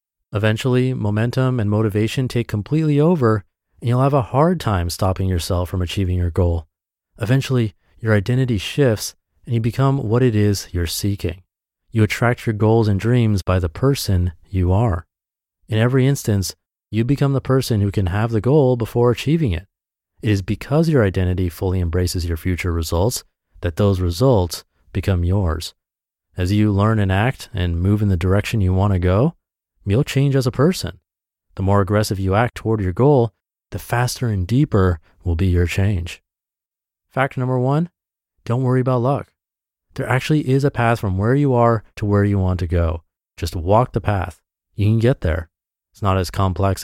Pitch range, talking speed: 90-125 Hz, 180 wpm